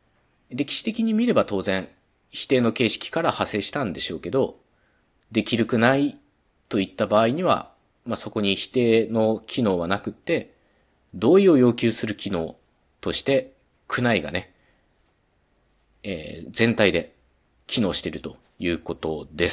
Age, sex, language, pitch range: 40-59, male, Japanese, 85-130 Hz